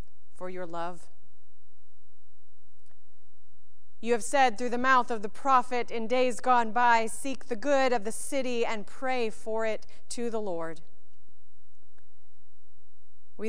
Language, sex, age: English, female, 40-59